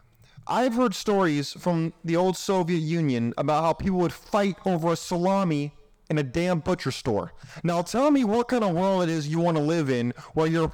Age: 30-49